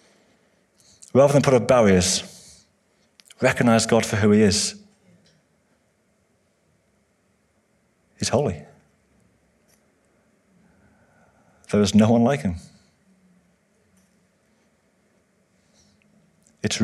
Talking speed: 70 wpm